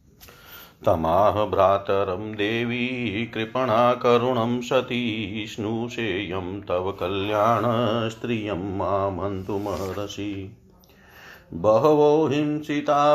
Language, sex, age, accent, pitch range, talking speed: Hindi, male, 50-69, native, 100-125 Hz, 60 wpm